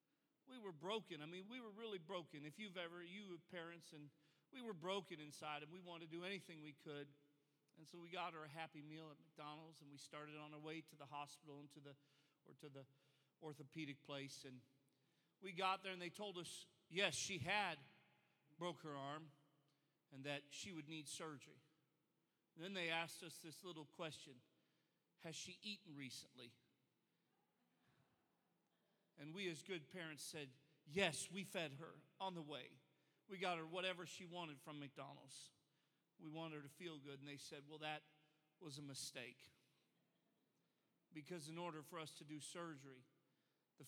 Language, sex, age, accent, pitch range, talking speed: English, male, 40-59, American, 140-170 Hz, 180 wpm